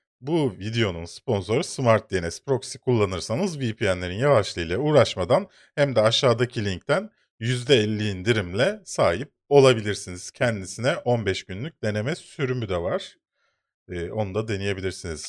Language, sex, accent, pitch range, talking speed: Turkish, male, native, 100-140 Hz, 115 wpm